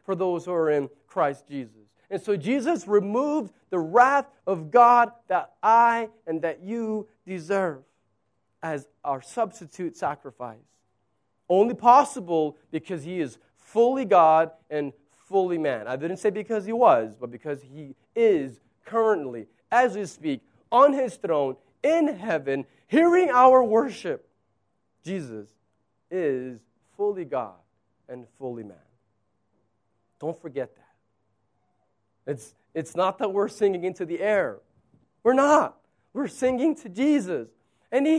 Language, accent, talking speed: English, American, 130 wpm